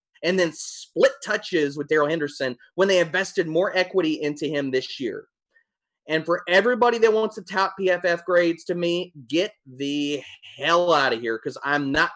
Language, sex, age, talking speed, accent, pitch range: English, male, 30-49, 180 wpm, American, 130-195 Hz